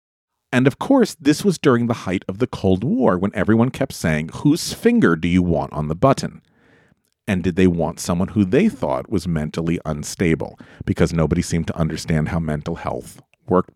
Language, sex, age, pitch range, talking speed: English, male, 40-59, 85-135 Hz, 190 wpm